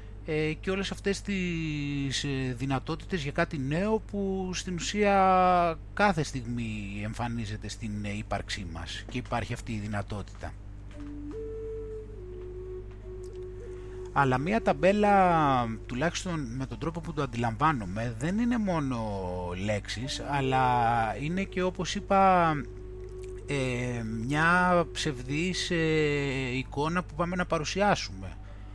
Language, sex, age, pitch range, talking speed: Greek, male, 30-49, 105-160 Hz, 100 wpm